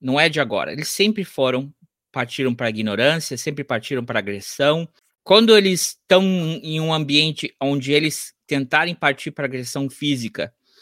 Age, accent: 20-39, Brazilian